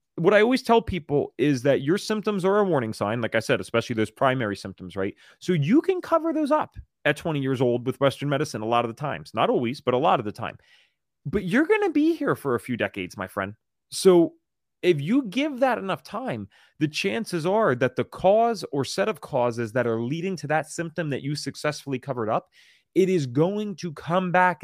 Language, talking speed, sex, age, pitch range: English, 225 wpm, male, 30-49, 115-175 Hz